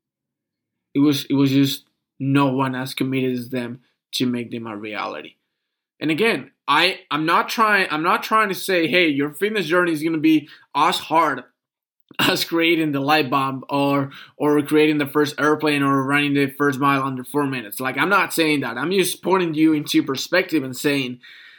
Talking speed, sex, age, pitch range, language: 190 wpm, male, 20-39, 140-170 Hz, English